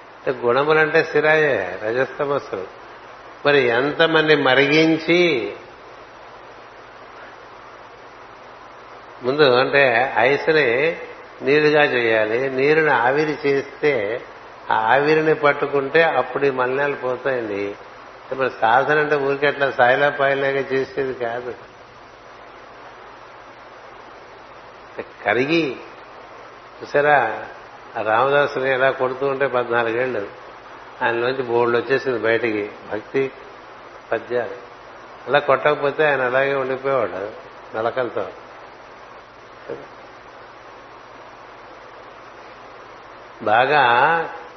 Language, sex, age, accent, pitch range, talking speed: Telugu, male, 60-79, native, 130-150 Hz, 65 wpm